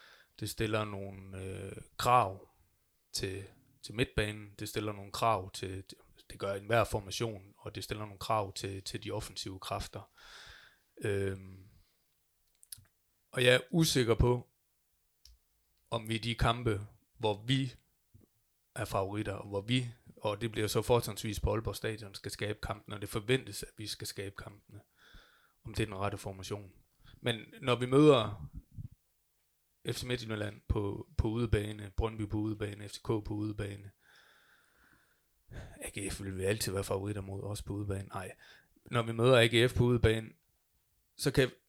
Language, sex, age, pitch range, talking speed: Danish, male, 20-39, 100-115 Hz, 155 wpm